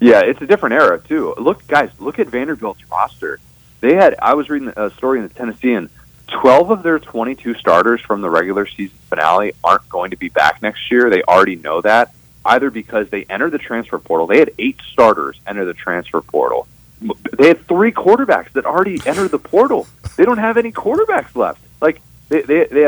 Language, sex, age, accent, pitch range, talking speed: English, male, 30-49, American, 105-140 Hz, 205 wpm